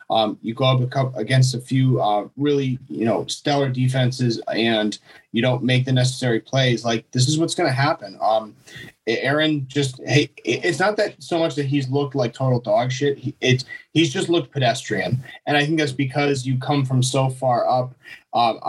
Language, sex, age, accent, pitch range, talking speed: English, male, 30-49, American, 120-140 Hz, 185 wpm